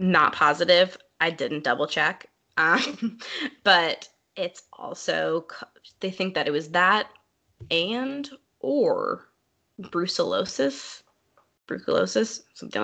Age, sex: 20-39, female